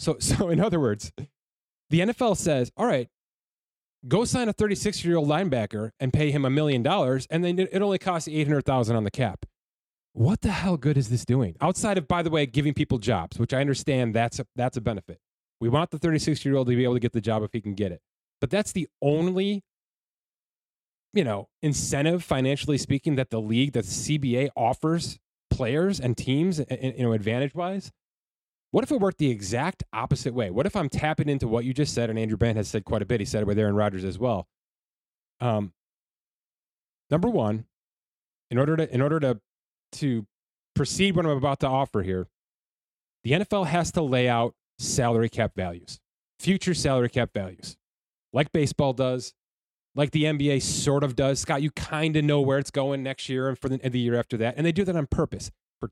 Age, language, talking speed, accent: 30-49, English, 200 wpm, American